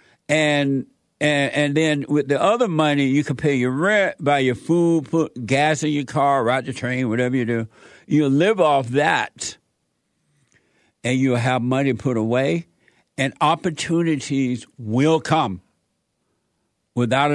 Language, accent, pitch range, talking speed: English, American, 130-155 Hz, 145 wpm